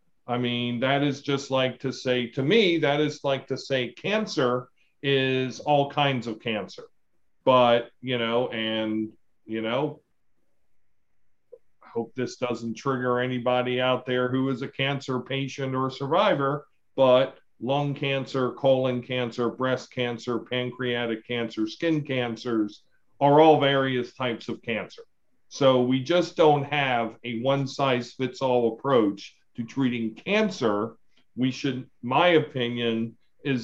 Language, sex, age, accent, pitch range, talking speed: English, male, 50-69, American, 120-140 Hz, 135 wpm